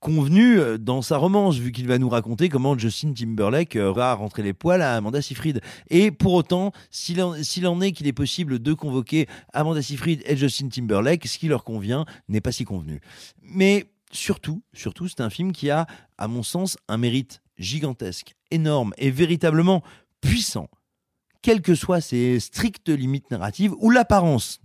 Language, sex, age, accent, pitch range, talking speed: French, male, 40-59, French, 110-165 Hz, 175 wpm